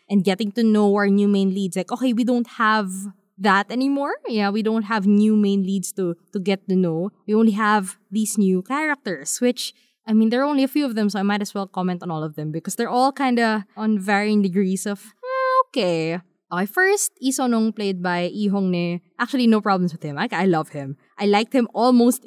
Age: 20-39